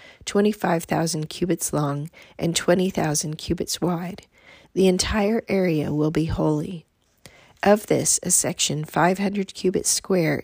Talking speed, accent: 115 wpm, American